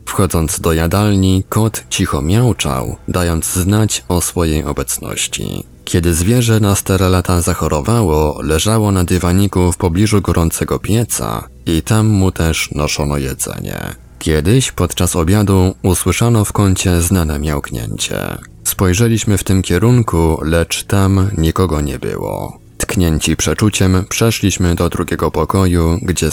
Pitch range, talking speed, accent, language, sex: 80-100 Hz, 125 wpm, native, Polish, male